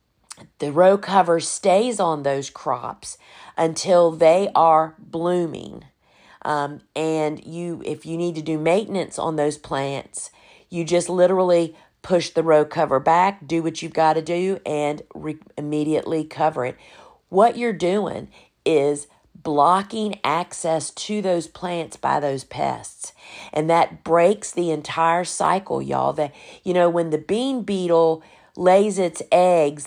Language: English